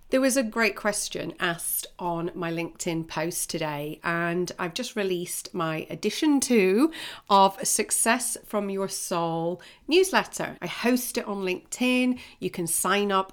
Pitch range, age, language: 170-240 Hz, 40-59, English